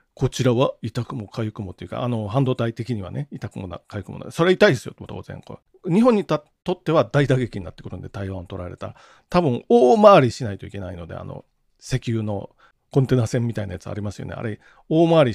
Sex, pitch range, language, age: male, 110-165 Hz, Japanese, 40-59